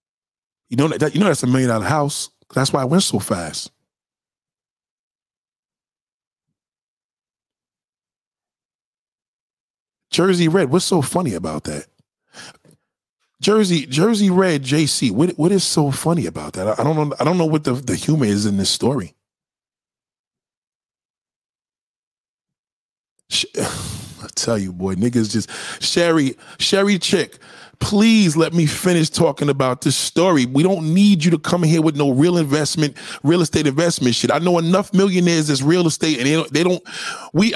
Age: 20-39